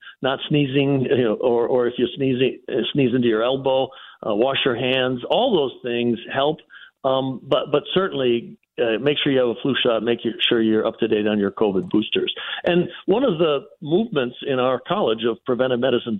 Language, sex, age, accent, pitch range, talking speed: English, male, 60-79, American, 115-135 Hz, 195 wpm